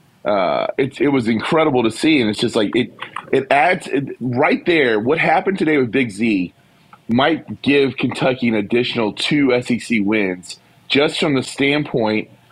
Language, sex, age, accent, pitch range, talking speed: English, male, 30-49, American, 110-135 Hz, 170 wpm